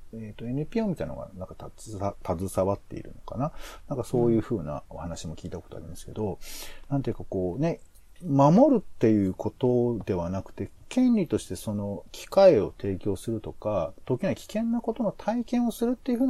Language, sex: Japanese, male